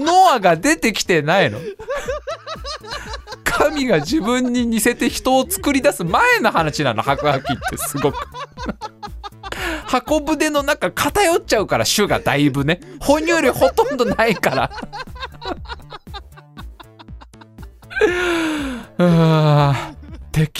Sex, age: male, 20-39